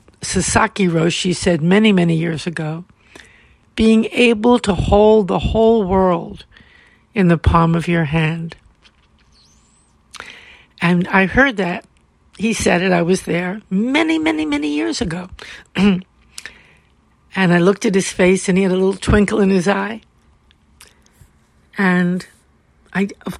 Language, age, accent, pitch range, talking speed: English, 60-79, American, 175-220 Hz, 135 wpm